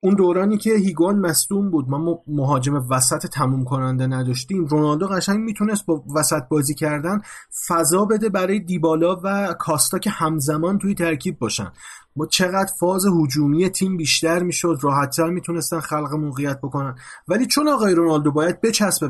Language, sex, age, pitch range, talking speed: Persian, male, 30-49, 140-195 Hz, 155 wpm